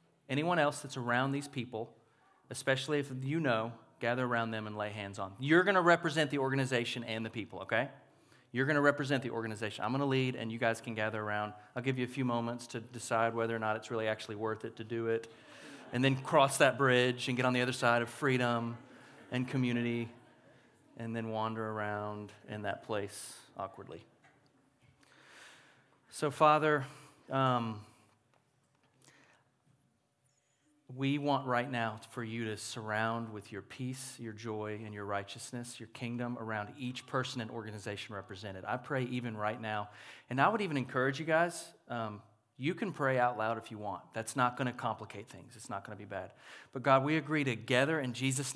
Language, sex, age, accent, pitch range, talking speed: English, male, 30-49, American, 110-135 Hz, 190 wpm